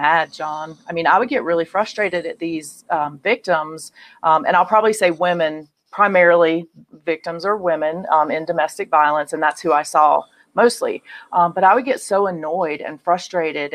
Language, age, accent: English, 40-59, American